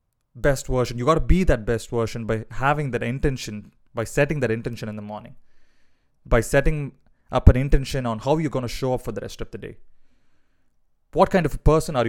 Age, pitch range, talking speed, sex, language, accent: 20-39, 110-145 Hz, 220 wpm, male, English, Indian